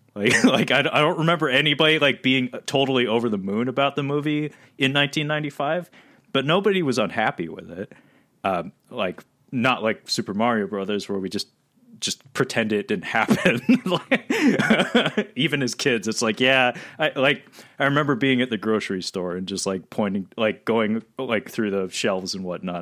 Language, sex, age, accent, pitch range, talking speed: English, male, 30-49, American, 100-145 Hz, 175 wpm